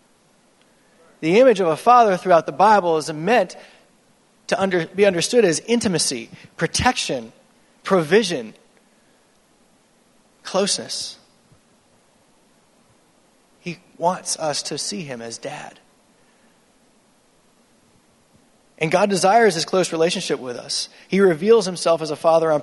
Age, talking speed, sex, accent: 30-49, 110 wpm, male, American